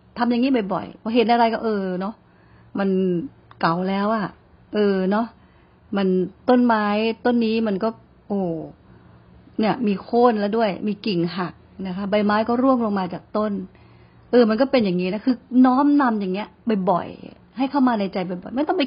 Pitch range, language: 185-235 Hz, Thai